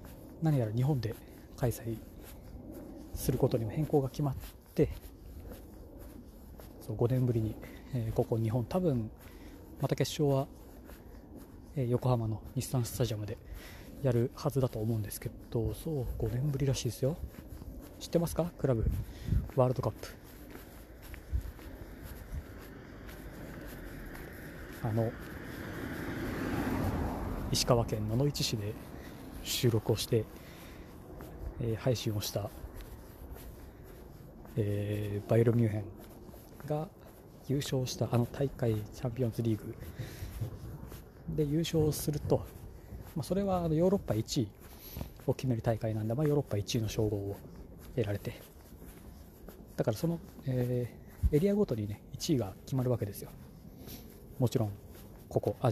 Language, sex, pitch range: Japanese, male, 105-130 Hz